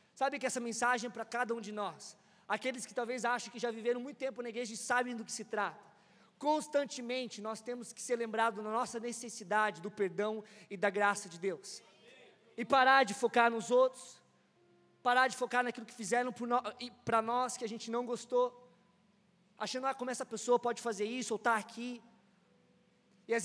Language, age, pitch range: Portuguese, 20-39, 220-255 Hz